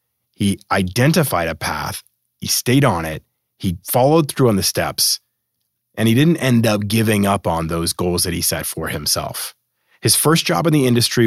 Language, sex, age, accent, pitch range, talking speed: English, male, 30-49, American, 100-130 Hz, 185 wpm